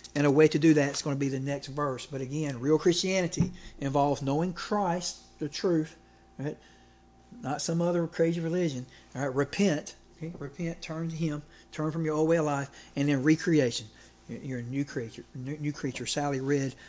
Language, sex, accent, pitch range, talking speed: English, male, American, 140-170 Hz, 190 wpm